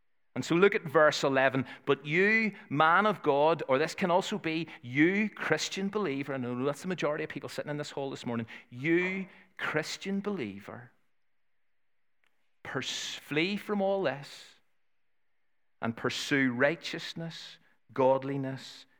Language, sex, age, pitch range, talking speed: English, male, 50-69, 125-170 Hz, 135 wpm